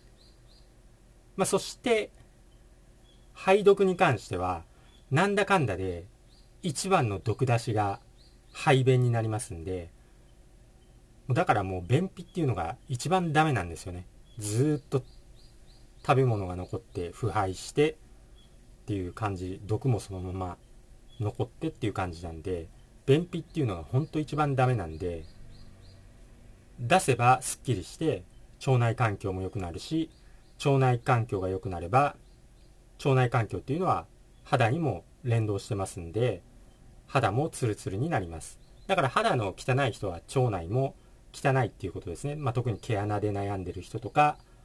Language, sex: Japanese, male